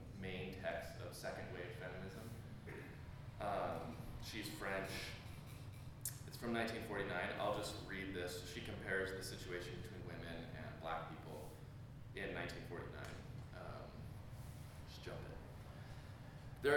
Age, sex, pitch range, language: 20-39, male, 105-125 Hz, English